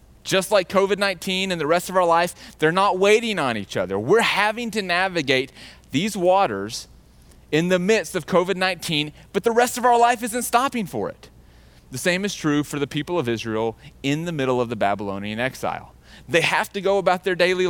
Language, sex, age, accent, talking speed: English, male, 30-49, American, 200 wpm